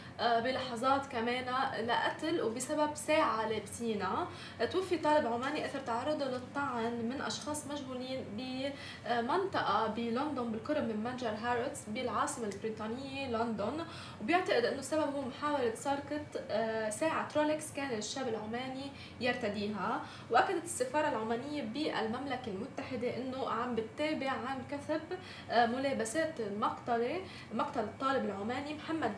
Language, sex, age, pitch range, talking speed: Arabic, female, 20-39, 225-290 Hz, 105 wpm